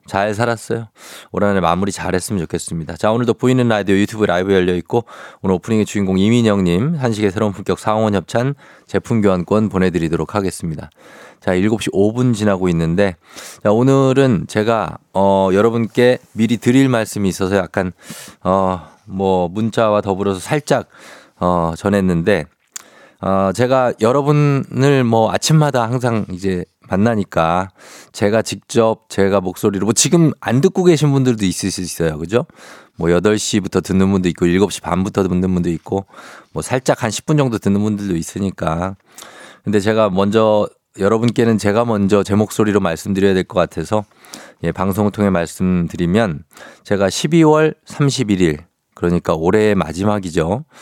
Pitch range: 95-115 Hz